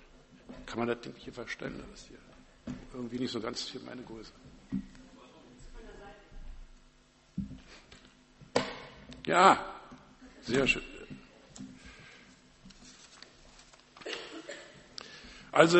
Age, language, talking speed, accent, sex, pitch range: 60-79, German, 70 wpm, German, male, 140-180 Hz